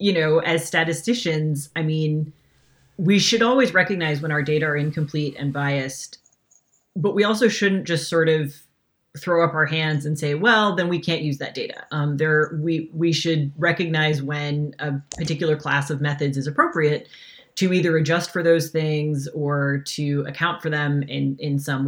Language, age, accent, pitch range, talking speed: English, 30-49, American, 150-175 Hz, 180 wpm